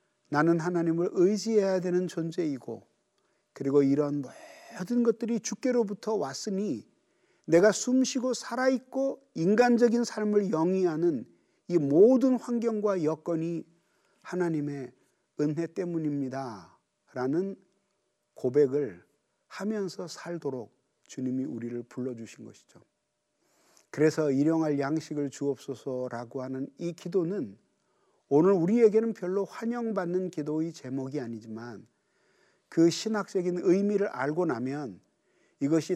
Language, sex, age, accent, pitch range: Korean, male, 40-59, native, 140-200 Hz